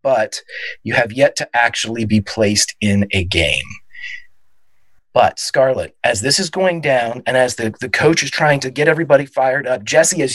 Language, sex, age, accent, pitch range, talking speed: English, male, 30-49, American, 115-145 Hz, 185 wpm